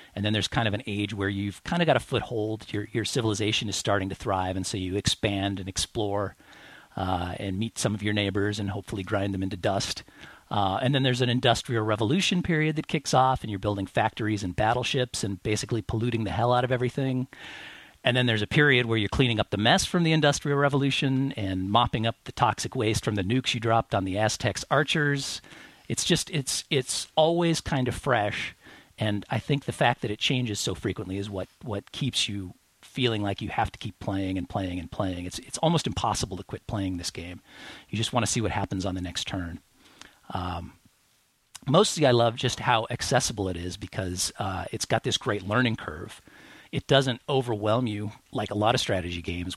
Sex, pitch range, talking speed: male, 100-125 Hz, 215 wpm